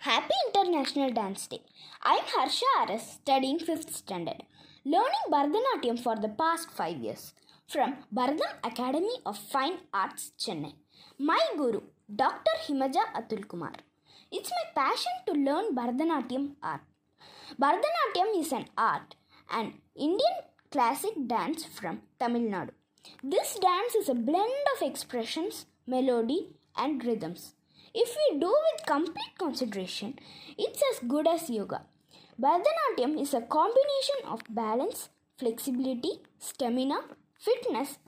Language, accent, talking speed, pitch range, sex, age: Tamil, native, 125 wpm, 245-350 Hz, female, 20-39